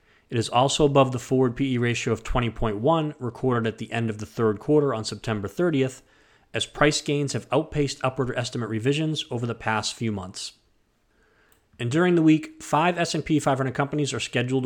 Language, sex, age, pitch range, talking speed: English, male, 30-49, 110-145 Hz, 180 wpm